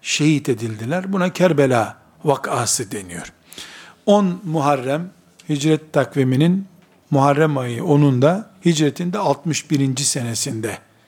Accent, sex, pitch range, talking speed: native, male, 140-180 Hz, 90 wpm